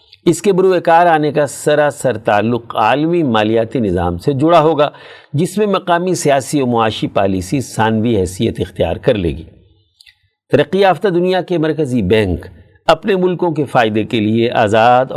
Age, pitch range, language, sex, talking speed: 50-69, 110-160 Hz, Urdu, male, 160 wpm